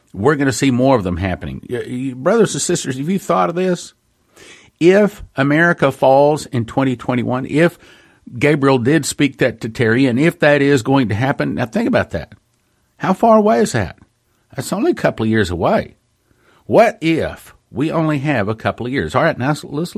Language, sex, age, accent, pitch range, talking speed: English, male, 50-69, American, 110-145 Hz, 190 wpm